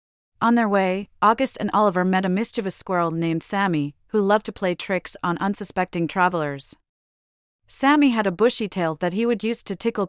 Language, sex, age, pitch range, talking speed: English, female, 40-59, 165-210 Hz, 185 wpm